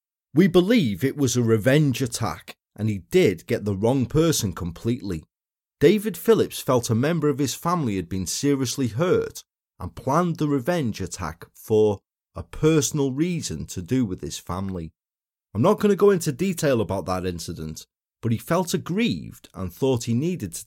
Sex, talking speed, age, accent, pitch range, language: male, 175 wpm, 30-49, British, 100-160 Hz, English